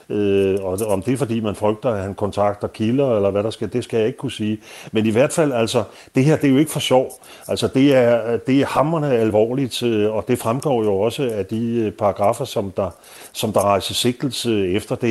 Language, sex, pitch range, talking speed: Danish, male, 105-125 Hz, 225 wpm